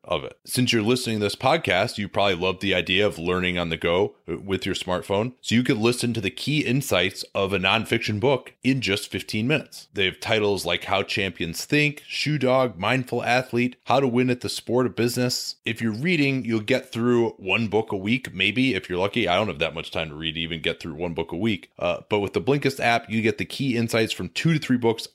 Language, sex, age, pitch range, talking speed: English, male, 30-49, 95-125 Hz, 240 wpm